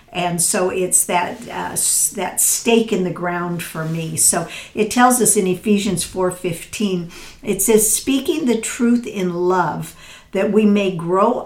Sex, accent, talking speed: female, American, 155 wpm